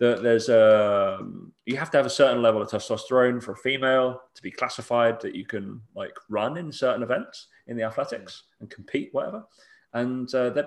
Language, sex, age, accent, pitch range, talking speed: English, male, 20-39, British, 110-130 Hz, 195 wpm